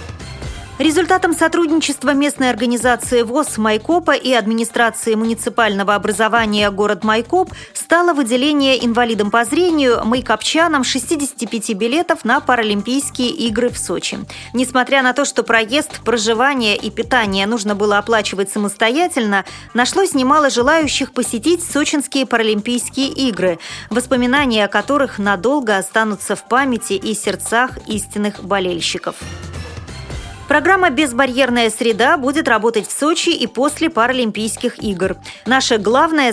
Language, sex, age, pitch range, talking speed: Russian, female, 30-49, 215-275 Hz, 110 wpm